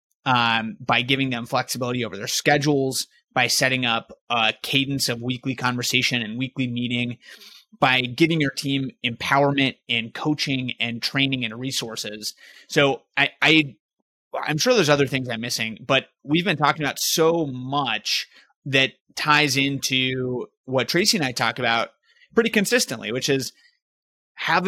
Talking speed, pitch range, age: 145 wpm, 125-150 Hz, 30-49